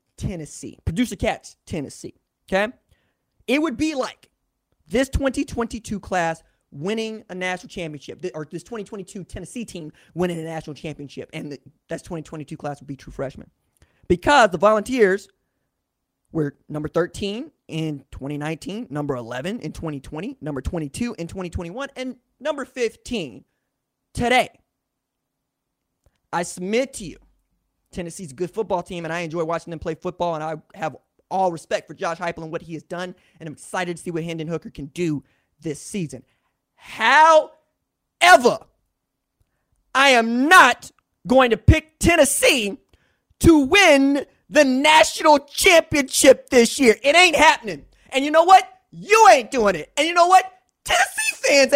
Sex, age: male, 20-39